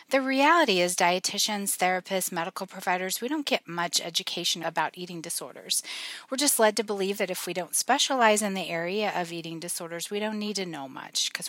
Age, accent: 40-59, American